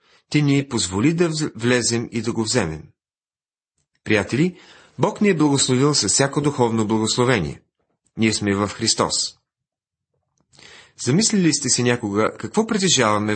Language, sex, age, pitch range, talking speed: Bulgarian, male, 40-59, 115-155 Hz, 125 wpm